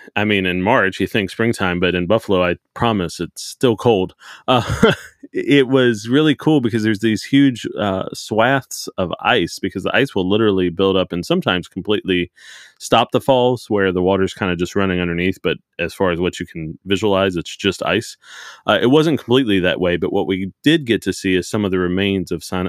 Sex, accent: male, American